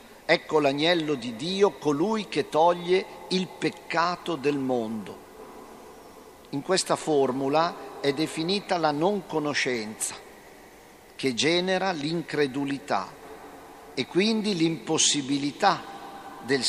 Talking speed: 90 wpm